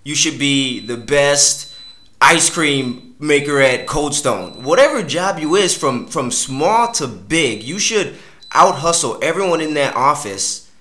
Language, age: English, 20-39